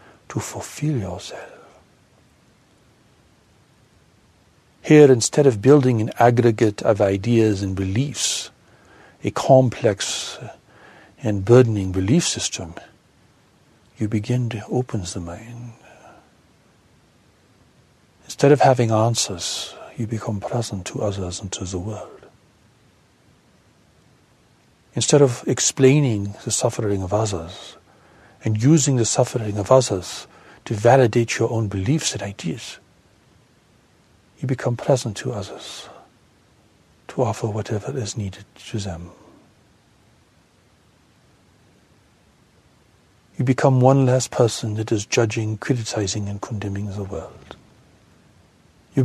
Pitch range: 100-130 Hz